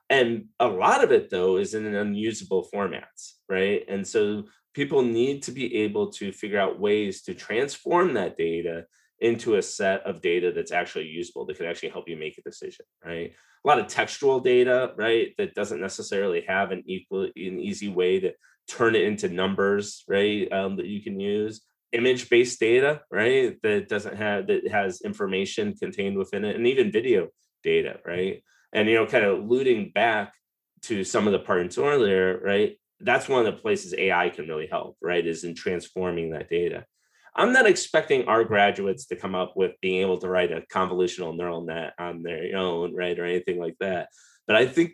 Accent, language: American, English